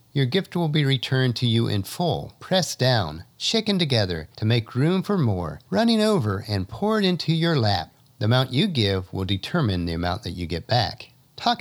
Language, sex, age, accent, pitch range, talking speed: English, male, 50-69, American, 105-155 Hz, 195 wpm